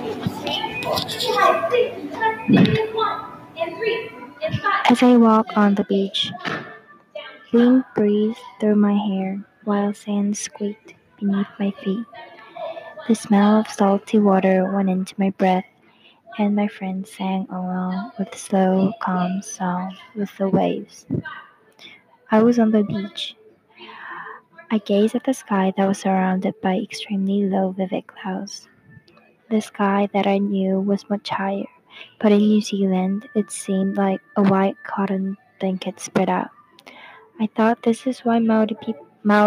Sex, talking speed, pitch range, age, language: female, 130 wpm, 190-225 Hz, 20-39, English